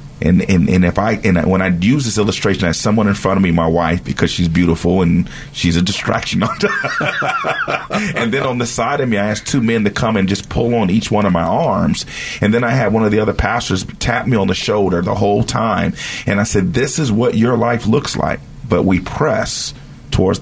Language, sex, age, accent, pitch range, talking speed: English, male, 40-59, American, 95-120 Hz, 235 wpm